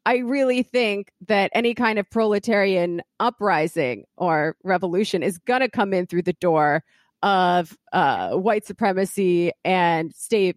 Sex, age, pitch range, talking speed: female, 30-49, 175-230 Hz, 140 wpm